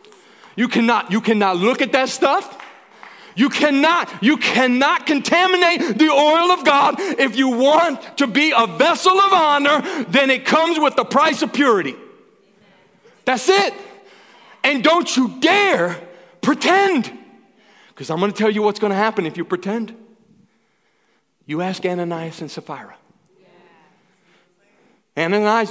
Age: 40-59